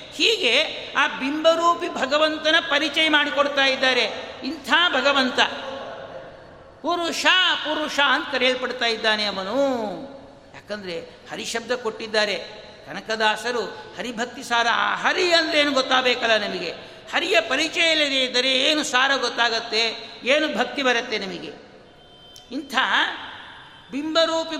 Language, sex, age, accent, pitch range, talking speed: Kannada, male, 60-79, native, 220-290 Hz, 95 wpm